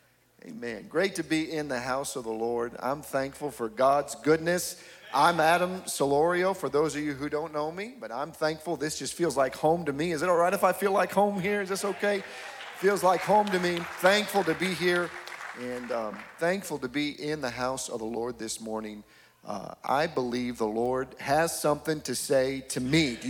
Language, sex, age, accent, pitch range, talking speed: English, male, 40-59, American, 135-185 Hz, 215 wpm